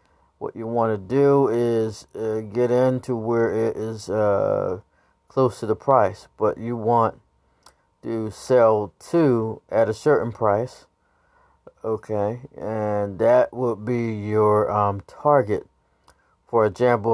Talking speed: 130 wpm